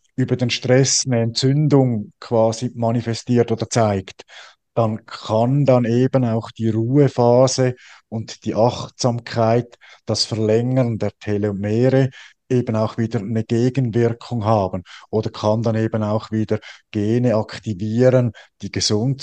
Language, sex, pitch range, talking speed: German, male, 110-125 Hz, 120 wpm